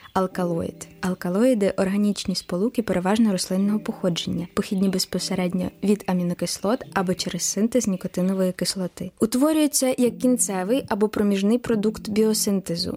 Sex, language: female, Ukrainian